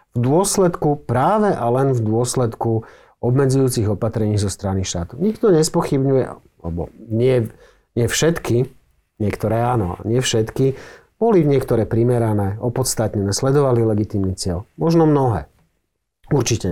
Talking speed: 120 wpm